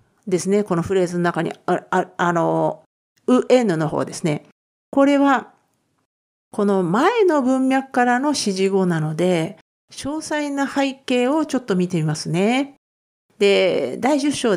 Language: Japanese